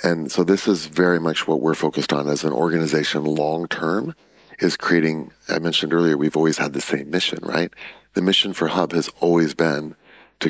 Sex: male